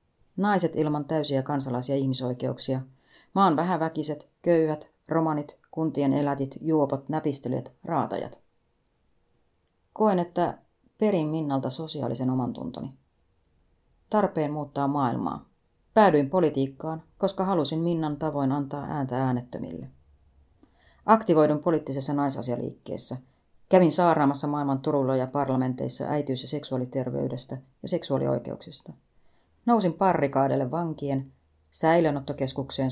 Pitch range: 130-160 Hz